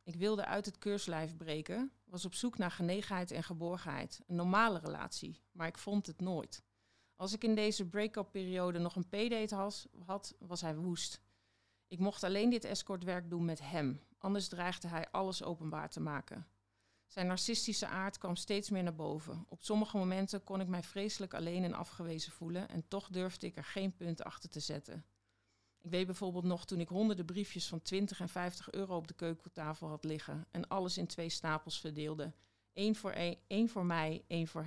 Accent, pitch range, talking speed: Dutch, 155-190 Hz, 185 wpm